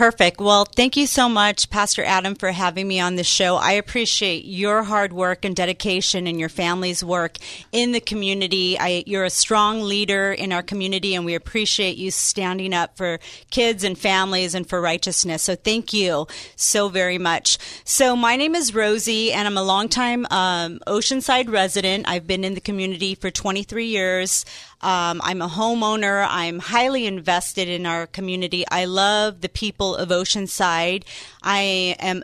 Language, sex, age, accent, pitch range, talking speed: English, female, 40-59, American, 180-205 Hz, 175 wpm